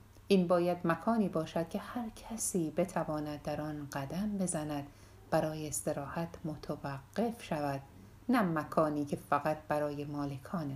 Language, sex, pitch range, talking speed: Persian, female, 145-190 Hz, 125 wpm